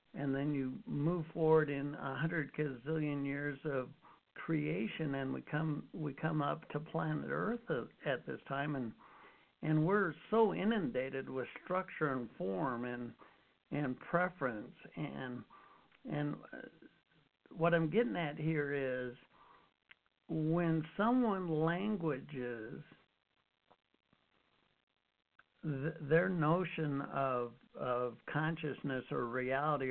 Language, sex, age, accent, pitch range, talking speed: English, male, 60-79, American, 140-170 Hz, 110 wpm